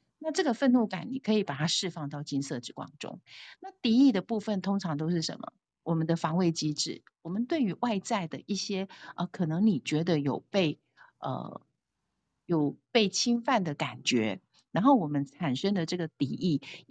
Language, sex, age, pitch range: Chinese, female, 50-69, 150-215 Hz